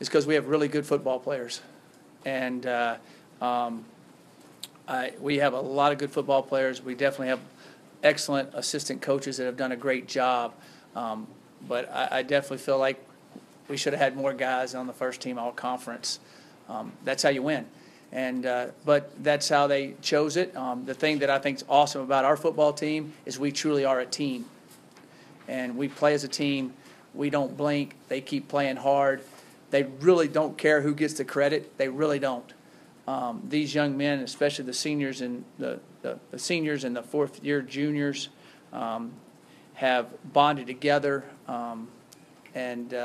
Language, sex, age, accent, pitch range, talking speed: English, male, 40-59, American, 125-145 Hz, 175 wpm